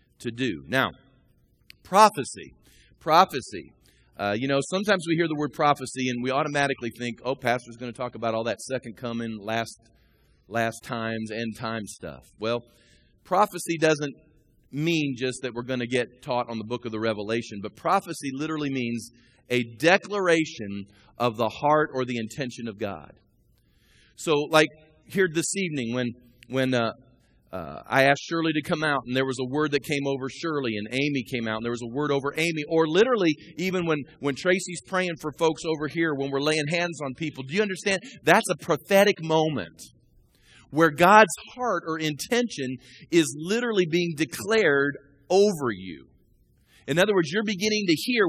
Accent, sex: American, male